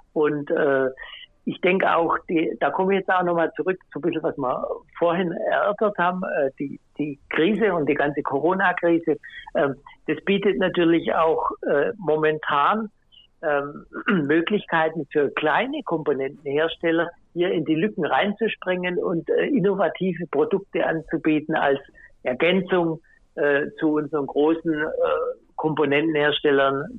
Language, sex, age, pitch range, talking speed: German, male, 60-79, 150-190 Hz, 135 wpm